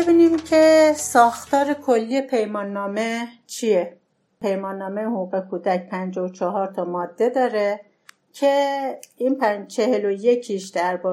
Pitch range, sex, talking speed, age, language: 185-220 Hz, female, 115 wpm, 50-69, Persian